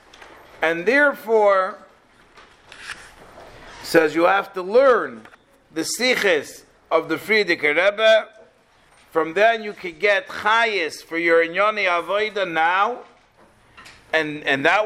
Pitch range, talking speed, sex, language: 180-235 Hz, 110 wpm, male, English